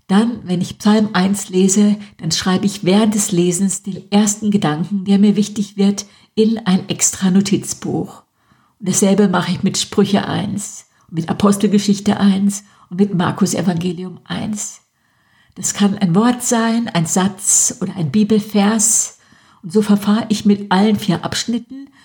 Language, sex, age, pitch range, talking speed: German, female, 60-79, 185-210 Hz, 150 wpm